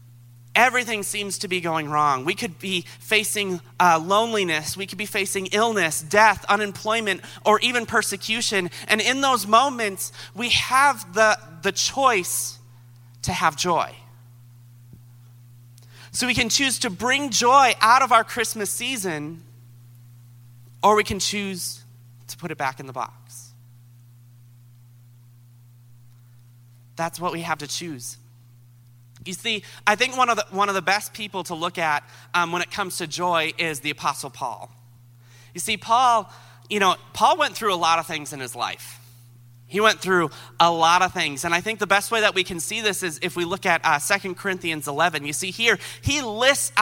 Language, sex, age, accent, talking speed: English, male, 30-49, American, 175 wpm